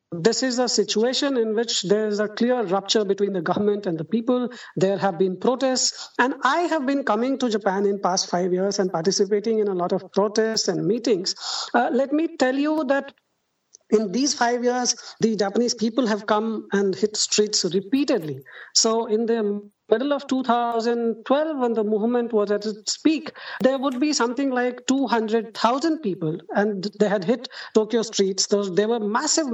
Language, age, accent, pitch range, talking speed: English, 50-69, Indian, 200-250 Hz, 180 wpm